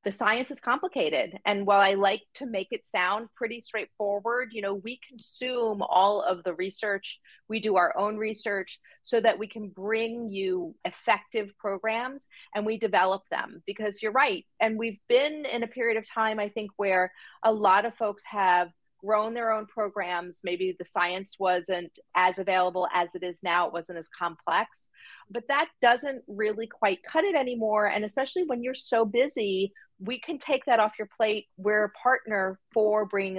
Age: 40-59